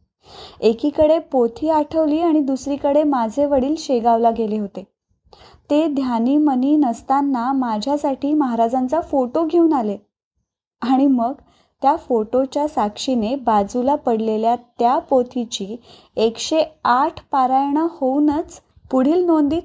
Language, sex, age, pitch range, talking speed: Marathi, female, 20-39, 235-305 Hz, 105 wpm